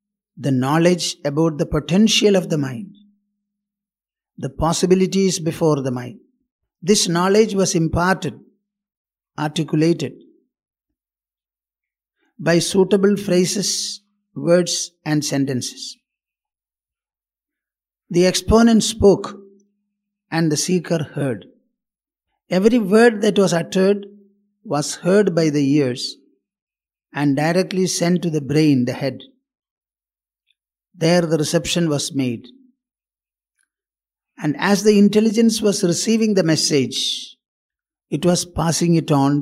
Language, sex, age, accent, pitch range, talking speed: English, male, 60-79, Indian, 160-205 Hz, 100 wpm